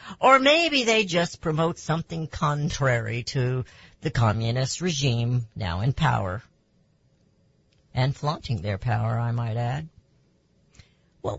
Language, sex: English, female